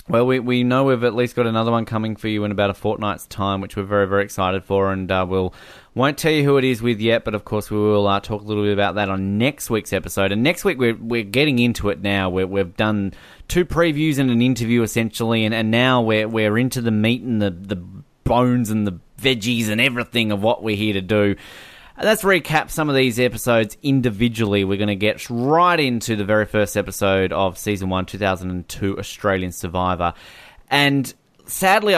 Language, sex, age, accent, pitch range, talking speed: English, male, 20-39, Australian, 100-120 Hz, 220 wpm